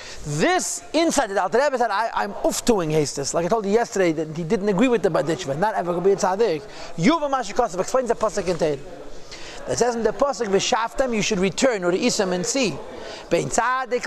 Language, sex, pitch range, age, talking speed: English, male, 195-260 Hz, 40-59, 230 wpm